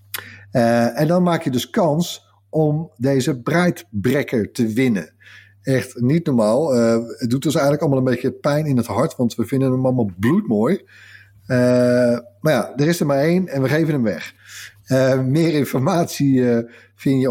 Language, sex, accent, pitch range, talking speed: Dutch, male, Dutch, 110-140 Hz, 185 wpm